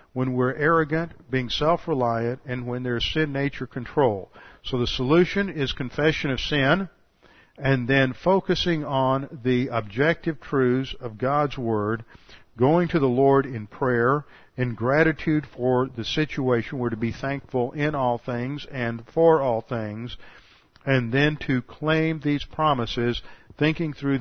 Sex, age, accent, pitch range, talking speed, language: male, 50-69, American, 115-140 Hz, 145 wpm, English